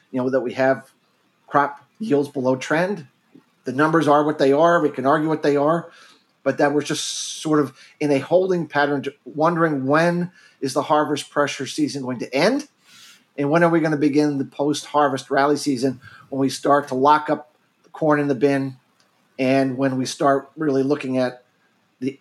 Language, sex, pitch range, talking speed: English, male, 130-150 Hz, 190 wpm